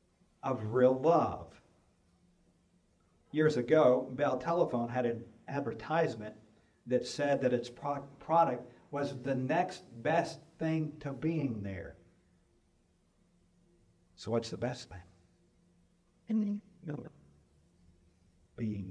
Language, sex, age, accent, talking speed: English, male, 50-69, American, 90 wpm